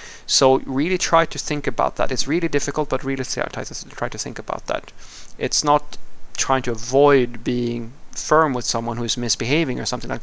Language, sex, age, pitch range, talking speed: English, male, 30-49, 125-140 Hz, 180 wpm